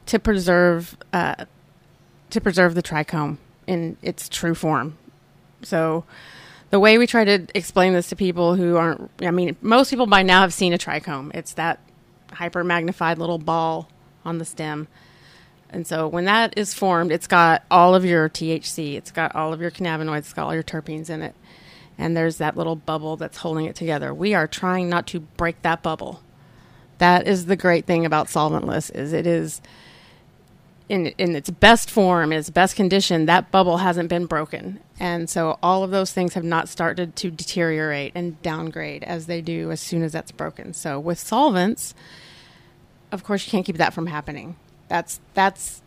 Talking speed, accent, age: 185 wpm, American, 30-49